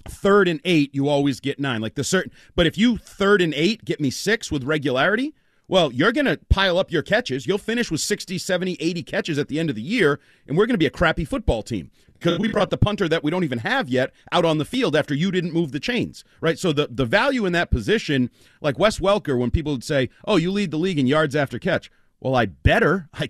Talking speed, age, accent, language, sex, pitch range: 260 wpm, 40-59, American, English, male, 125-175 Hz